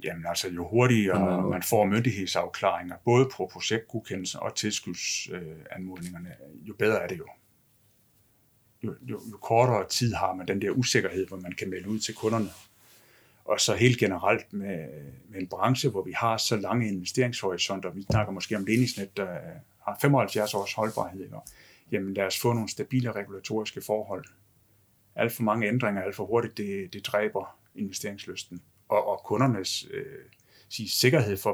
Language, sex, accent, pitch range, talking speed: Danish, male, native, 95-125 Hz, 155 wpm